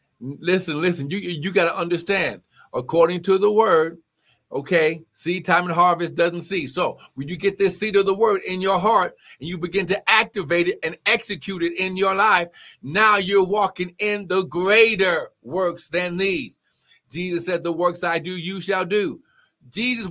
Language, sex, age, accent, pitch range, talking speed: English, male, 50-69, American, 130-195 Hz, 180 wpm